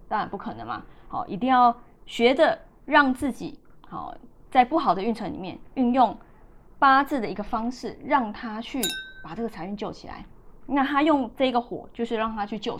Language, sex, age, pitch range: Chinese, female, 20-39, 205-265 Hz